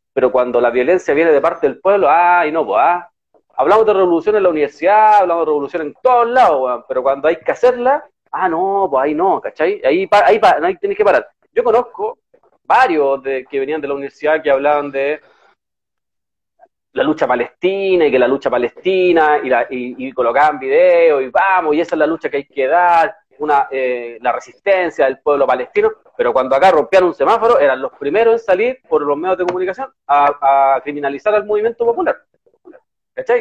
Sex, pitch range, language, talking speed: male, 145-230 Hz, Spanish, 195 wpm